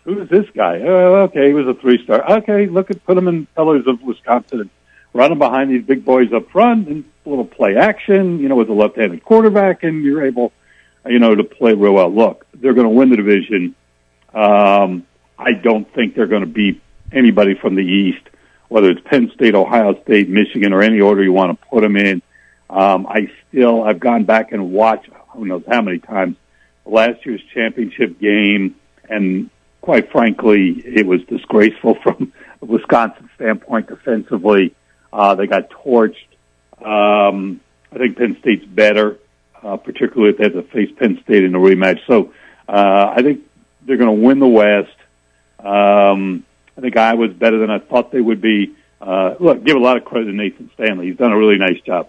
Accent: American